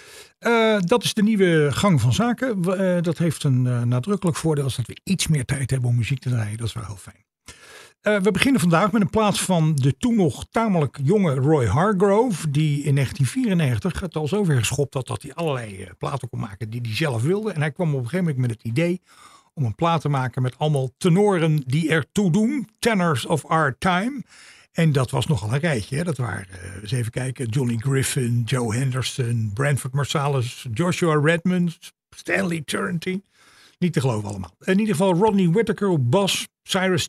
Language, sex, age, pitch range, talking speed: Dutch, male, 50-69, 125-185 Hz, 200 wpm